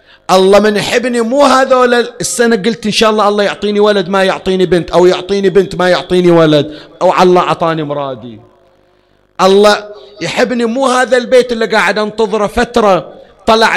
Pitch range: 150-210 Hz